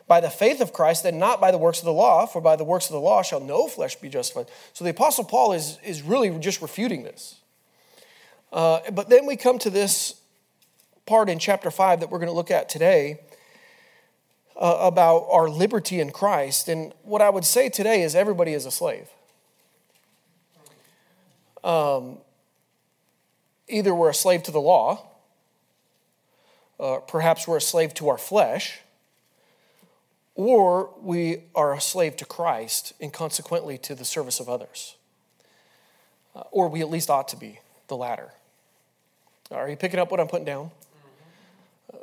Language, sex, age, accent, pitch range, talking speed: English, male, 30-49, American, 160-205 Hz, 170 wpm